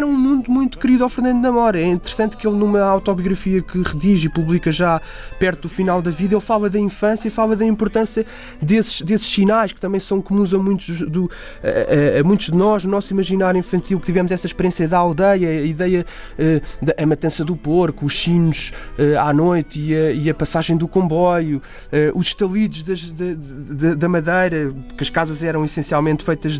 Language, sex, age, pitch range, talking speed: Portuguese, male, 20-39, 160-195 Hz, 185 wpm